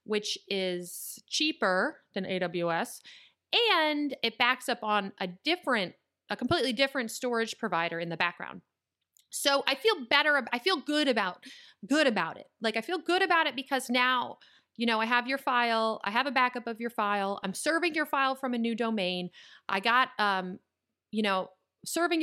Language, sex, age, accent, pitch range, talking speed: English, female, 30-49, American, 205-280 Hz, 180 wpm